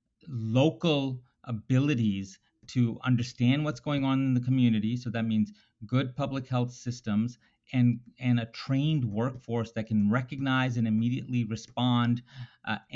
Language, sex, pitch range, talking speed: English, male, 110-130 Hz, 135 wpm